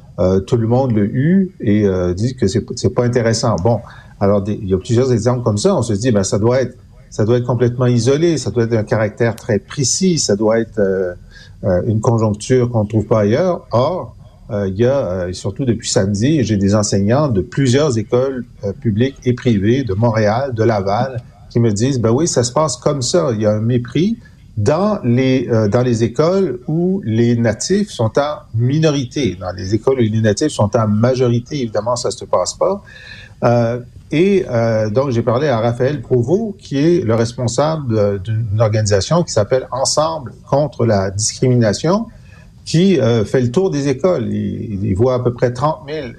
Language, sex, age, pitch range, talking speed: French, male, 50-69, 105-135 Hz, 205 wpm